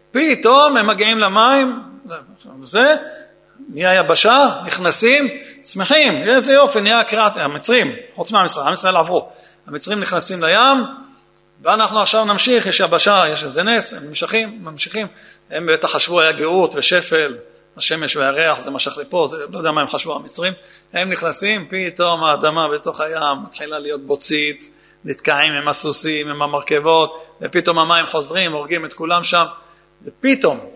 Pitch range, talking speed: 165-225 Hz, 135 wpm